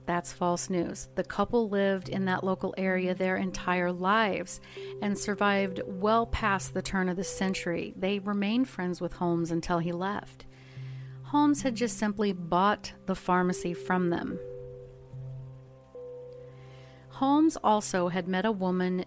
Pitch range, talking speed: 165-205 Hz, 140 wpm